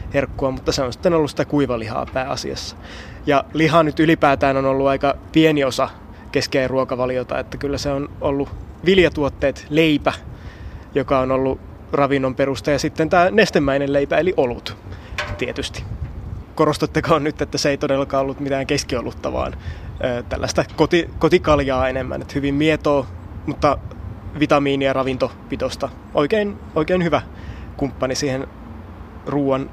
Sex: male